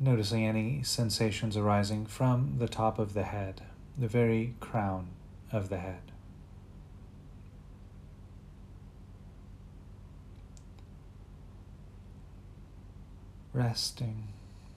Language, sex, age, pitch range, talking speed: English, male, 40-59, 95-110 Hz, 70 wpm